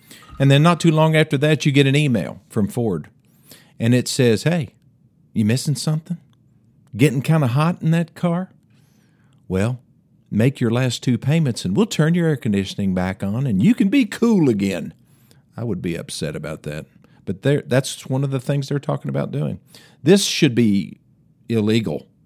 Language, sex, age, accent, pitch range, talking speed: English, male, 50-69, American, 100-140 Hz, 180 wpm